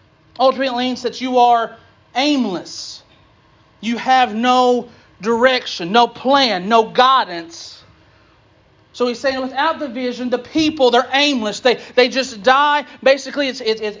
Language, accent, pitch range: English, American, 210-260 Hz